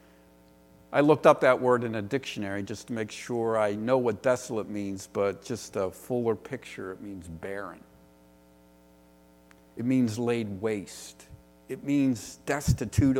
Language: English